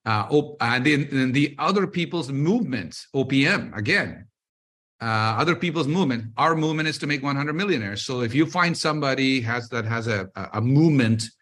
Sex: male